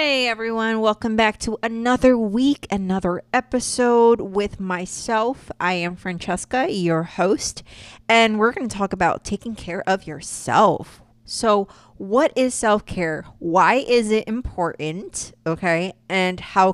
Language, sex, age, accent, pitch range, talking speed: English, female, 30-49, American, 165-215 Hz, 135 wpm